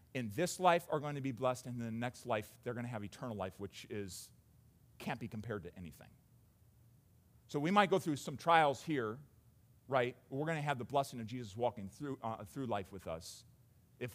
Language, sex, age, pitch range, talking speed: English, male, 40-59, 105-135 Hz, 215 wpm